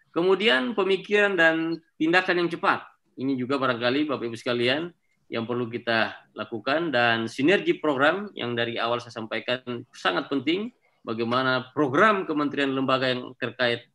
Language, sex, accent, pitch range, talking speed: Indonesian, male, native, 115-155 Hz, 135 wpm